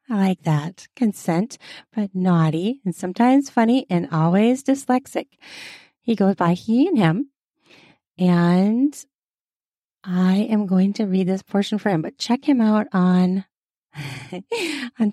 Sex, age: female, 30-49